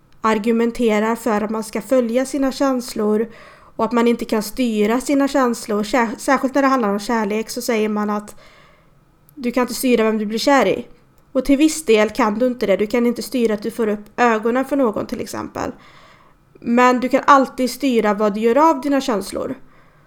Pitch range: 215-250 Hz